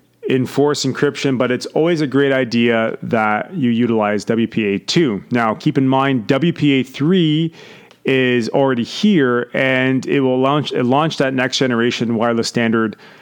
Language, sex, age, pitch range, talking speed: English, male, 30-49, 115-145 Hz, 140 wpm